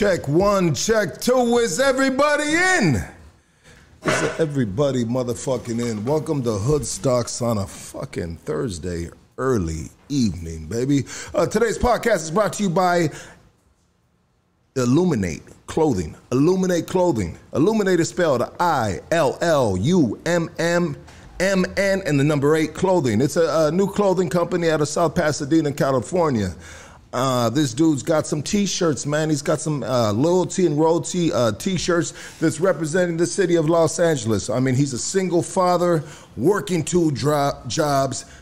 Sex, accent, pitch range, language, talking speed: male, American, 120-170 Hz, English, 145 wpm